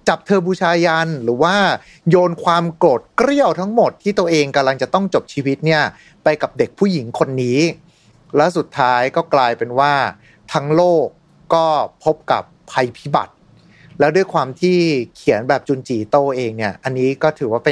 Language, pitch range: Thai, 125-170 Hz